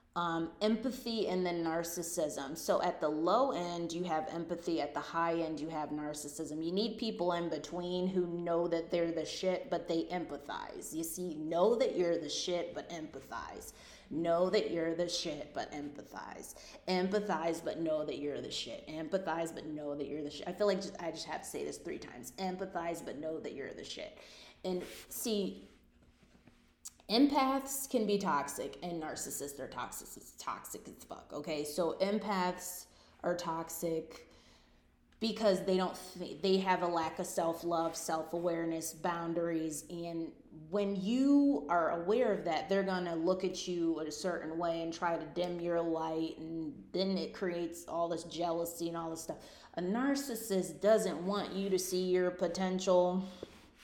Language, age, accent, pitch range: English, 30-49, American, 160-185 Hz